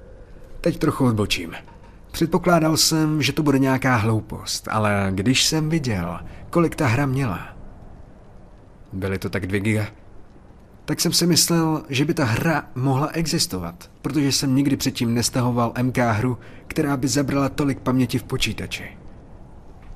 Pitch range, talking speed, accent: 100-145 Hz, 140 wpm, native